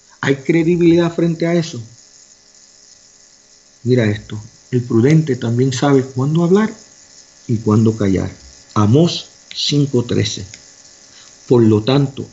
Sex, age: male, 50-69